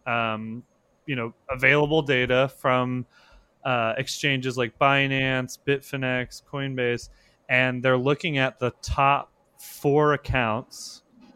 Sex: male